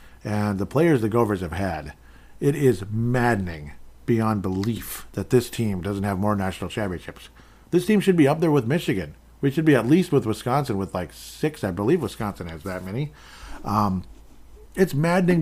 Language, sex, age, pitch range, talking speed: English, male, 50-69, 95-130 Hz, 185 wpm